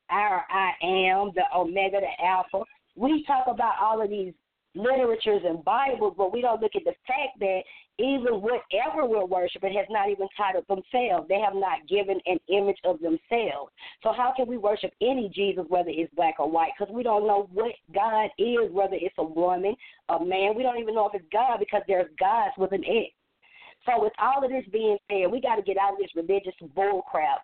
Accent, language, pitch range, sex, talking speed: American, English, 185-235 Hz, female, 210 wpm